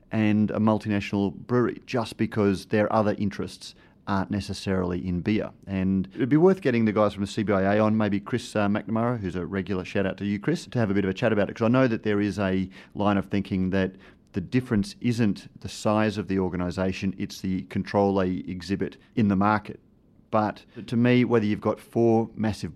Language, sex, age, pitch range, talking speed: English, male, 30-49, 95-105 Hz, 210 wpm